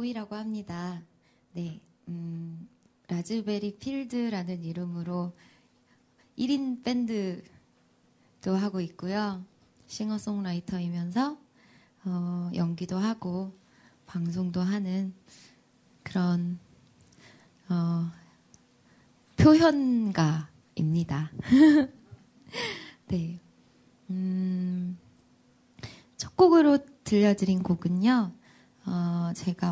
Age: 20-39